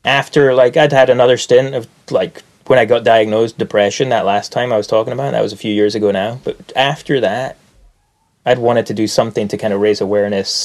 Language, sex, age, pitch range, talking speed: English, male, 20-39, 100-115 Hz, 225 wpm